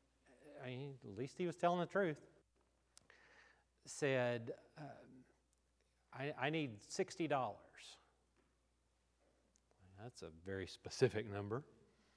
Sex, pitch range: male, 100-145 Hz